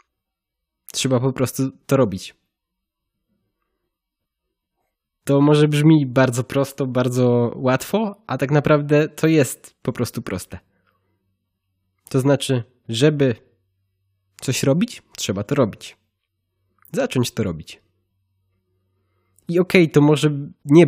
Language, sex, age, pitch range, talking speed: Polish, male, 20-39, 100-140 Hz, 105 wpm